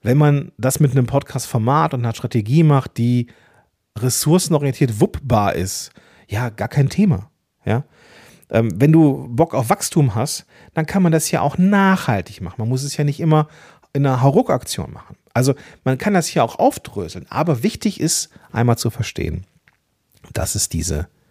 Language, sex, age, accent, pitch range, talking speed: German, male, 40-59, German, 115-155 Hz, 165 wpm